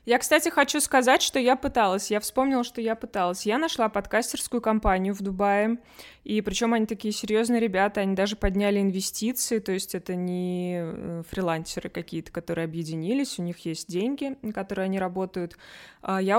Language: Russian